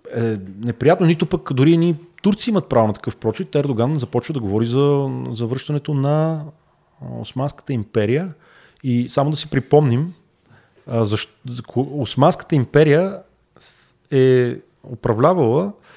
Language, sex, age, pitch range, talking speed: Bulgarian, male, 30-49, 115-165 Hz, 115 wpm